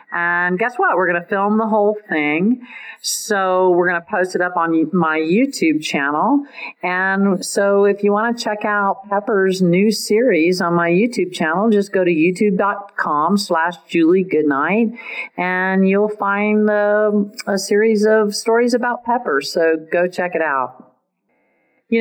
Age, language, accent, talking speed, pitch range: 50-69, English, American, 155 wpm, 165-215 Hz